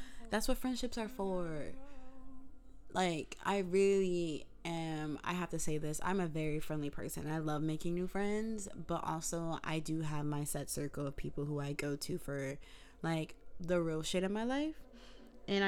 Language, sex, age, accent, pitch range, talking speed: English, female, 20-39, American, 160-200 Hz, 180 wpm